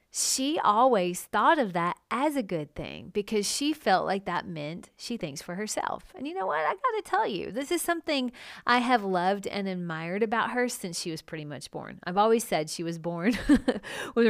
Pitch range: 180-235 Hz